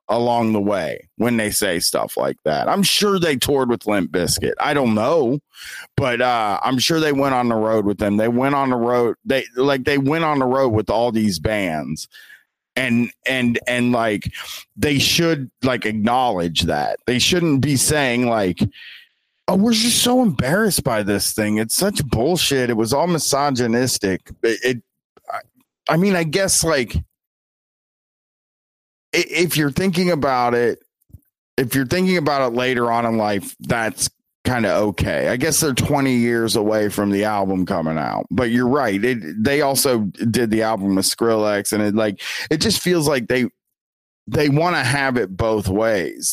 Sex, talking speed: male, 175 wpm